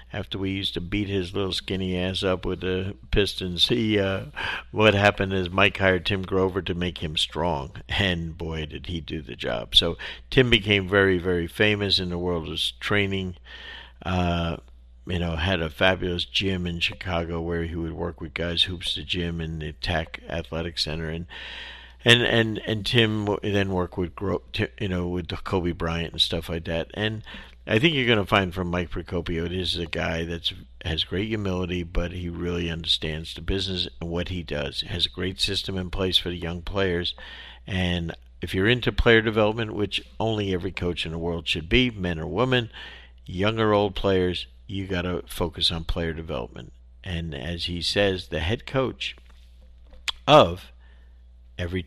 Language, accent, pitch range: English, American, 85-95 Hz